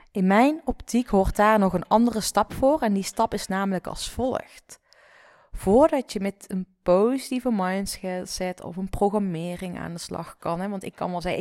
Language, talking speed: Dutch, 190 wpm